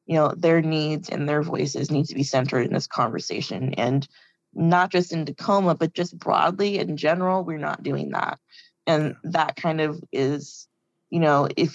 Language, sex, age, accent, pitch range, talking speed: English, female, 20-39, American, 145-170 Hz, 185 wpm